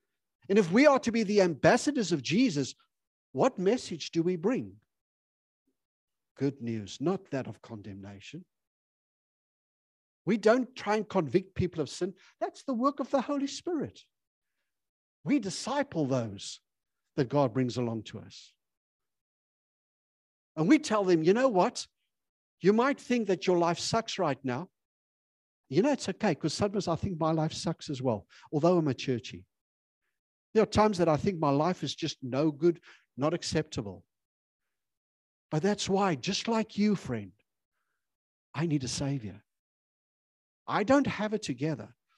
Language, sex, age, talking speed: English, male, 60-79, 155 wpm